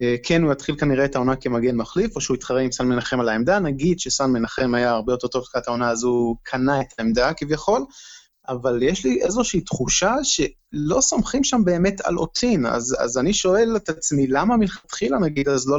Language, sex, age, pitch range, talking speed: Hebrew, male, 20-39, 125-165 Hz, 200 wpm